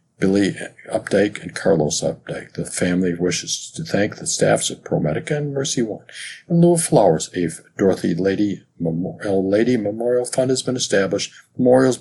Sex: male